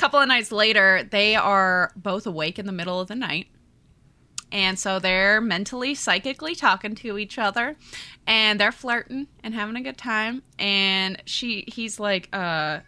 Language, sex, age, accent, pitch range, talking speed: English, female, 20-39, American, 180-220 Hz, 165 wpm